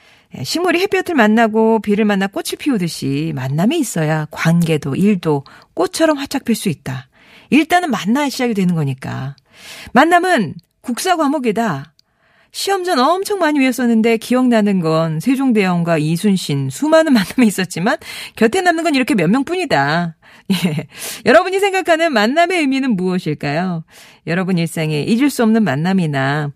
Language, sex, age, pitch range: Korean, female, 40-59, 165-260 Hz